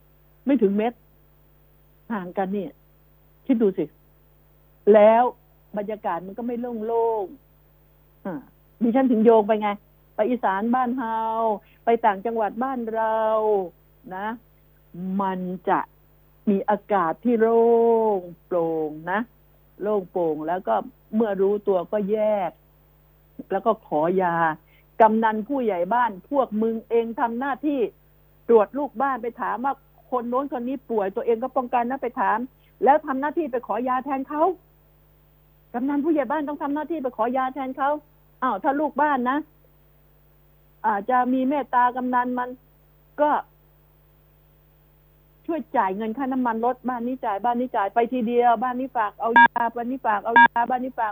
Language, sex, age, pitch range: Thai, female, 60-79, 210-260 Hz